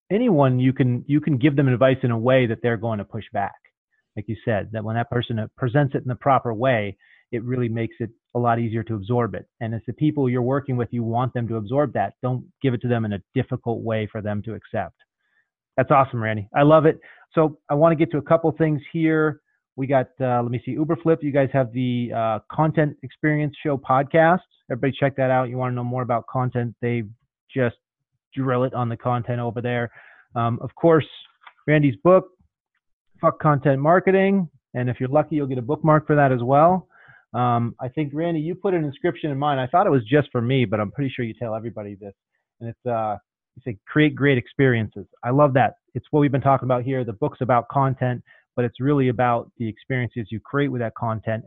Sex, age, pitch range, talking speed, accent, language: male, 30-49, 120-145 Hz, 230 wpm, American, English